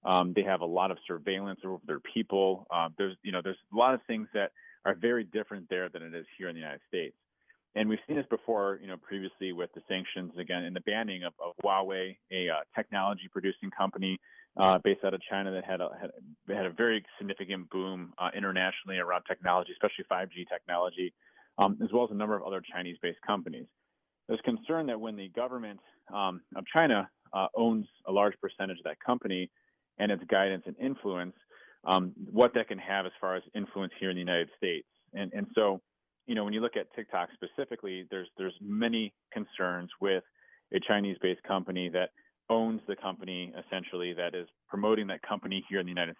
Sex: male